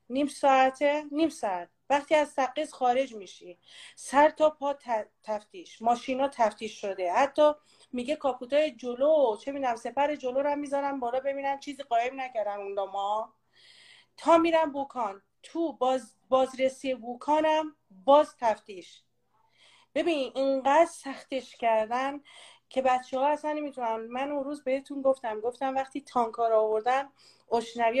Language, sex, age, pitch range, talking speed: Persian, female, 40-59, 240-300 Hz, 135 wpm